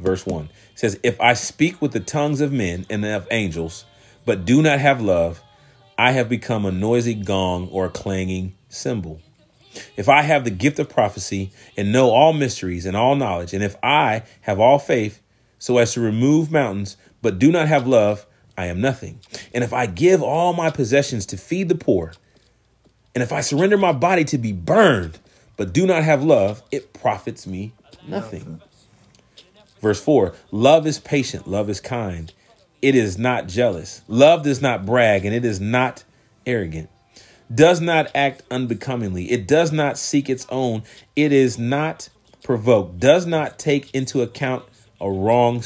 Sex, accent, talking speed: male, American, 175 wpm